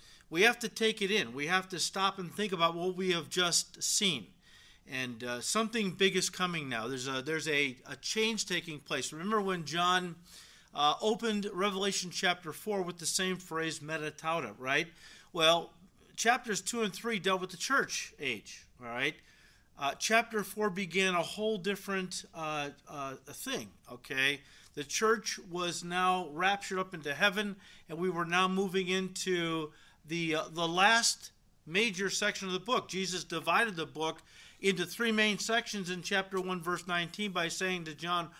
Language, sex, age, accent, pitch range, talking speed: English, male, 40-59, American, 165-205 Hz, 170 wpm